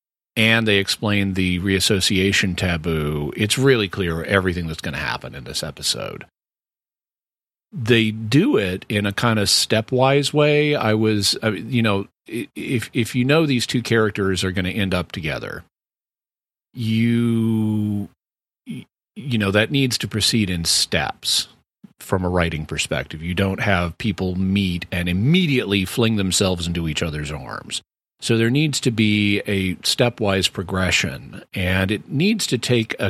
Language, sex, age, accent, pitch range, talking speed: English, male, 40-59, American, 95-120 Hz, 150 wpm